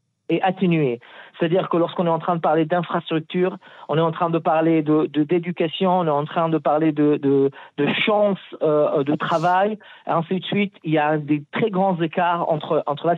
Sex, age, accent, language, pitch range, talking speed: male, 50-69, French, French, 150-185 Hz, 215 wpm